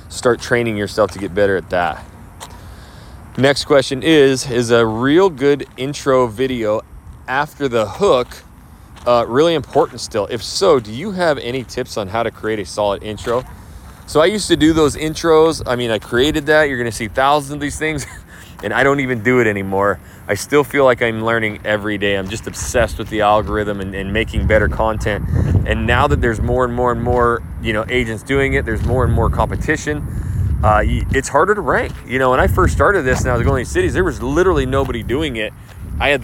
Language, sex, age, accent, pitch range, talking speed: English, male, 30-49, American, 100-130 Hz, 210 wpm